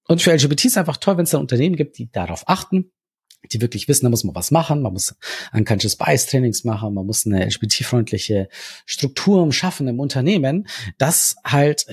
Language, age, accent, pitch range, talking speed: German, 40-59, German, 110-150 Hz, 190 wpm